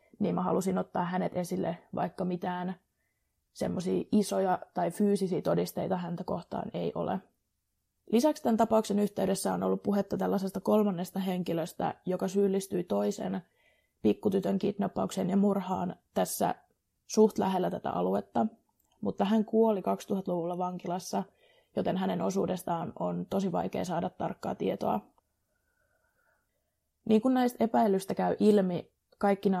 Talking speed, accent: 120 wpm, native